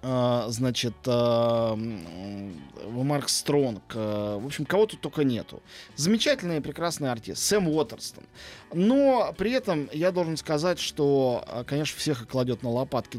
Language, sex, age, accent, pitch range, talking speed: Russian, male, 20-39, native, 120-160 Hz, 130 wpm